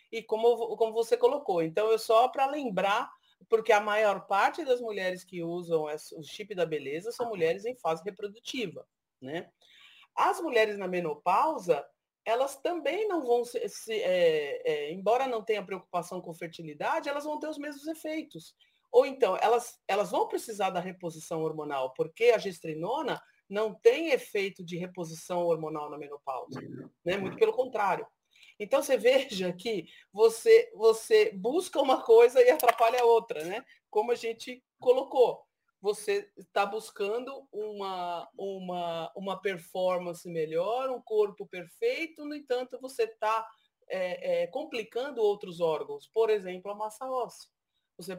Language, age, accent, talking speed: Portuguese, 40-59, Brazilian, 145 wpm